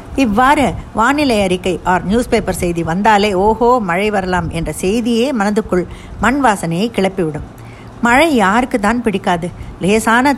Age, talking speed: 50-69, 125 wpm